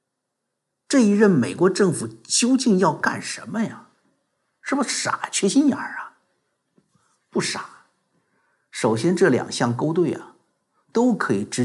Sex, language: male, Chinese